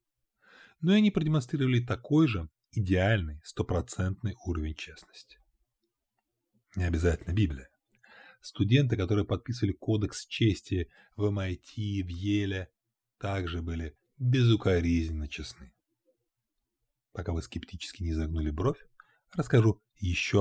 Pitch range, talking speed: 85-115 Hz, 100 wpm